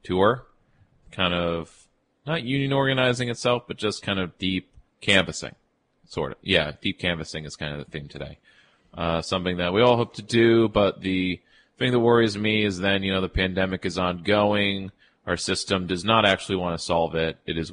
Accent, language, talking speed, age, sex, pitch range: American, English, 195 wpm, 30-49, male, 85-105 Hz